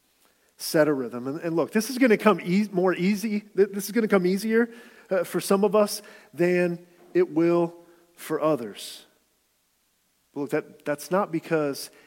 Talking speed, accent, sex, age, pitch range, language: 180 wpm, American, male, 40-59, 140-175 Hz, English